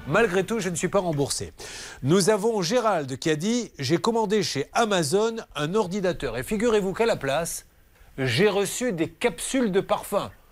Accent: French